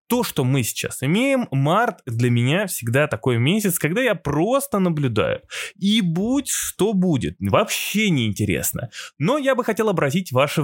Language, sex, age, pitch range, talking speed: Russian, male, 20-39, 130-180 Hz, 160 wpm